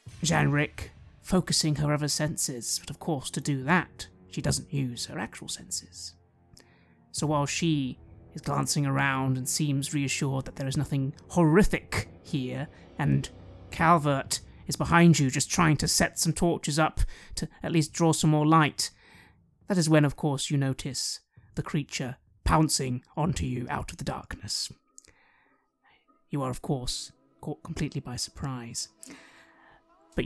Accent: British